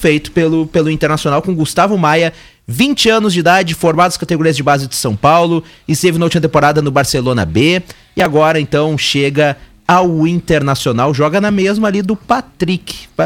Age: 30-49